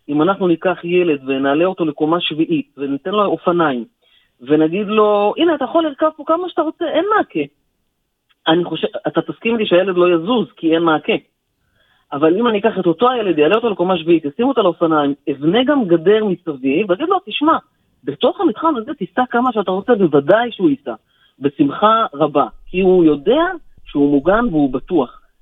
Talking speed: 175 wpm